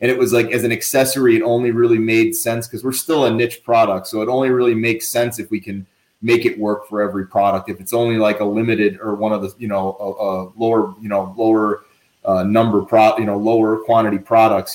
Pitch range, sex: 100-120 Hz, male